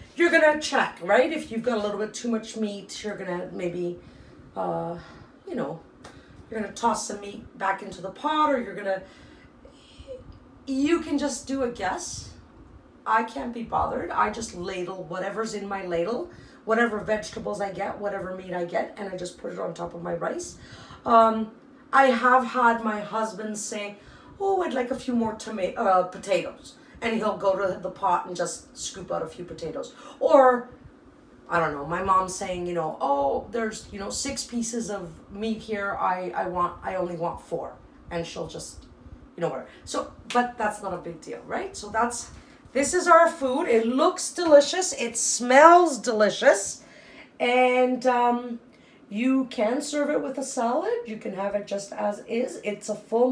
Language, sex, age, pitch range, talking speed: English, female, 40-59, 195-255 Hz, 190 wpm